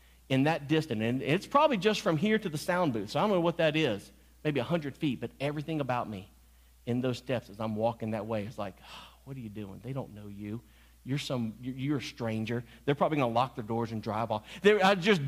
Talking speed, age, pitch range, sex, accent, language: 240 wpm, 40-59, 110-160 Hz, male, American, English